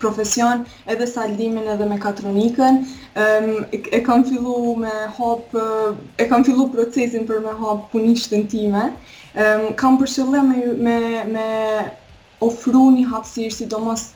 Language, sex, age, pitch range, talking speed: English, female, 20-39, 210-240 Hz, 140 wpm